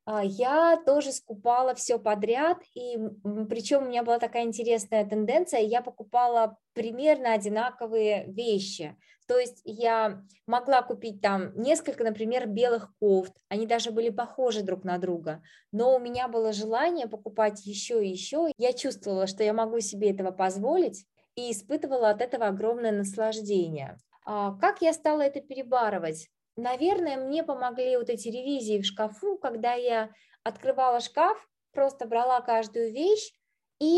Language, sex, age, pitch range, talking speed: Russian, female, 20-39, 210-260 Hz, 145 wpm